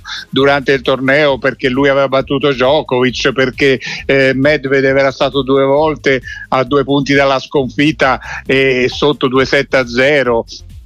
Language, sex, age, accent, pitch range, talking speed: Italian, male, 60-79, native, 130-150 Hz, 140 wpm